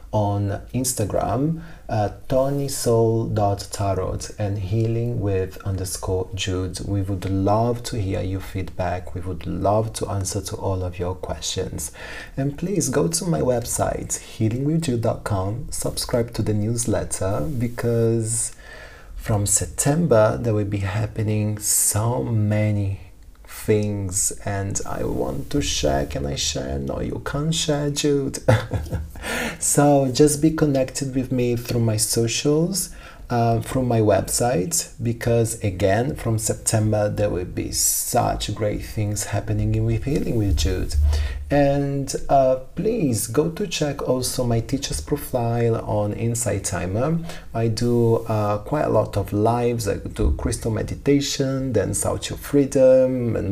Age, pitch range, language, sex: 30-49, 100-125 Hz, English, male